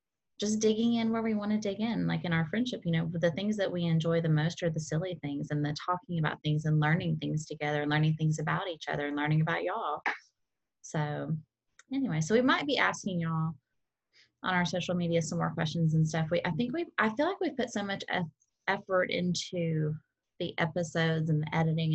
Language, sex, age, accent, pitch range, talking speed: English, female, 20-39, American, 155-190 Hz, 220 wpm